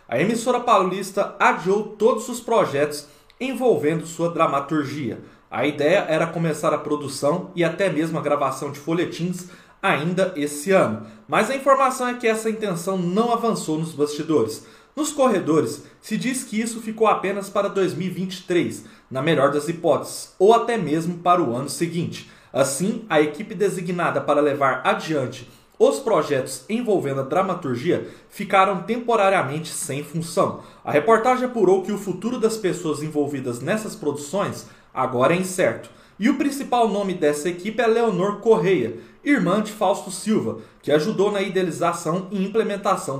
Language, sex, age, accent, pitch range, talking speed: Portuguese, male, 20-39, Brazilian, 150-210 Hz, 150 wpm